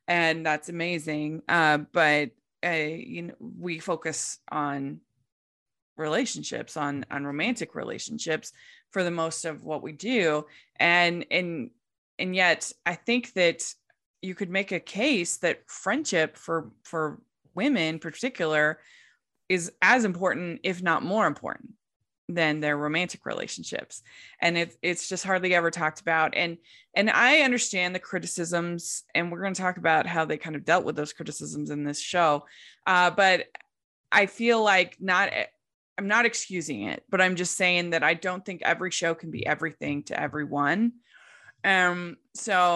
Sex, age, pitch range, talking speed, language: female, 20-39, 155-185 Hz, 155 wpm, English